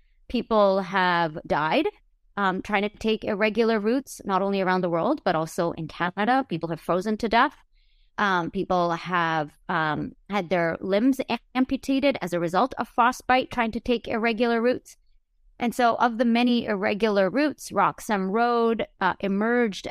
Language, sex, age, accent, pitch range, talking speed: English, female, 30-49, American, 180-225 Hz, 155 wpm